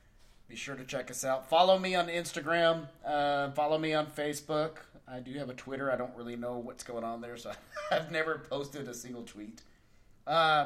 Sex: male